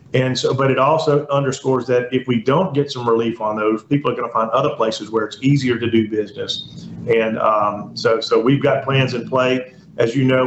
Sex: male